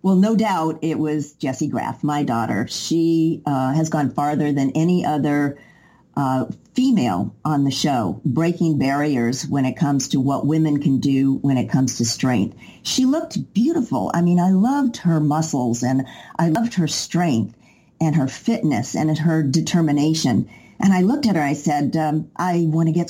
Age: 50-69